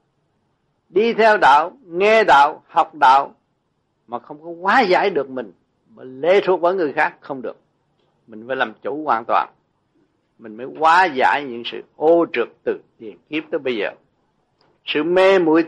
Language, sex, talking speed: Vietnamese, male, 170 wpm